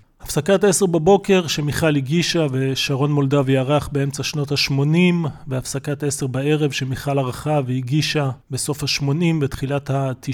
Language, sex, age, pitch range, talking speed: Hebrew, male, 30-49, 135-155 Hz, 115 wpm